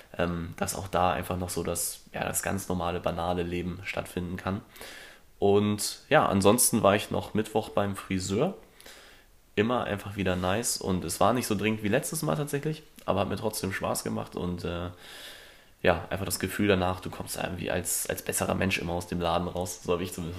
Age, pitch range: 20-39, 90-105 Hz